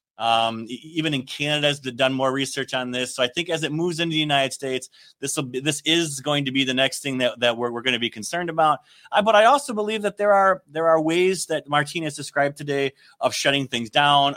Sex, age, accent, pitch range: male, 30-49, American, 130-165 Hz